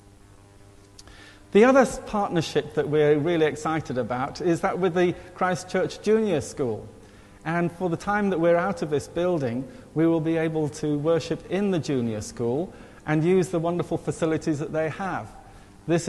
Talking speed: 165 wpm